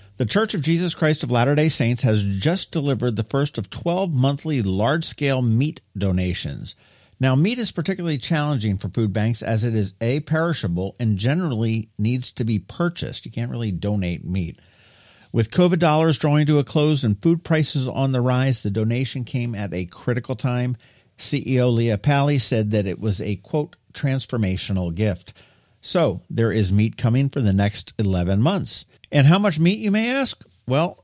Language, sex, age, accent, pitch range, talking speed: English, male, 50-69, American, 105-145 Hz, 180 wpm